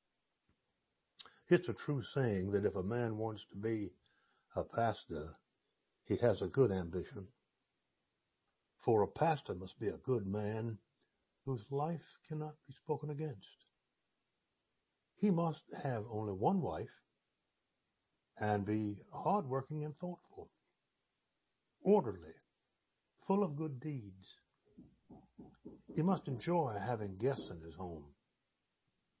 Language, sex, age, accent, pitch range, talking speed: English, male, 60-79, American, 105-155 Hz, 115 wpm